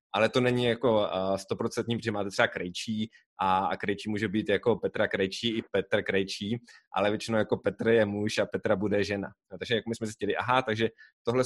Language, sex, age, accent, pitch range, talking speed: Czech, male, 20-39, native, 110-130 Hz, 200 wpm